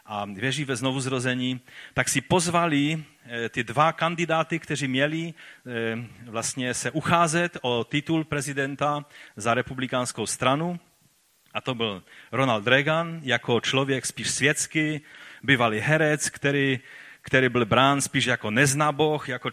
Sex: male